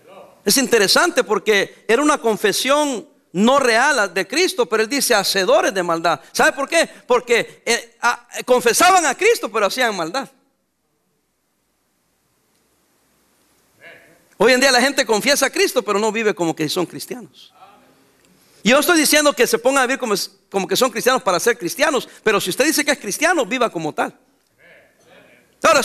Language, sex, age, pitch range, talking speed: English, male, 50-69, 190-275 Hz, 165 wpm